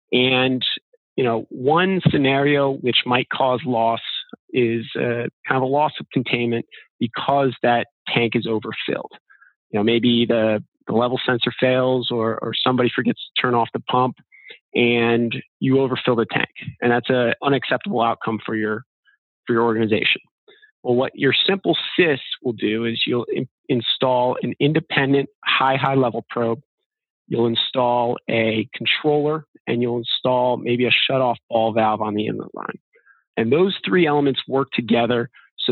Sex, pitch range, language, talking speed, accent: male, 115-140 Hz, English, 155 wpm, American